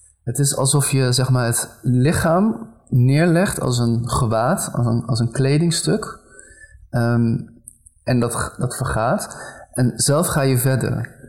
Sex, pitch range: male, 115-135 Hz